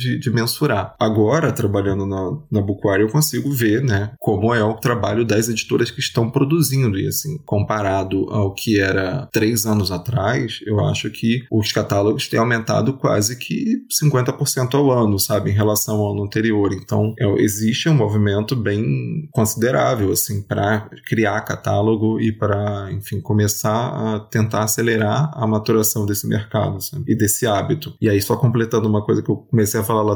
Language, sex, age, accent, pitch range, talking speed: Portuguese, male, 20-39, Brazilian, 105-120 Hz, 170 wpm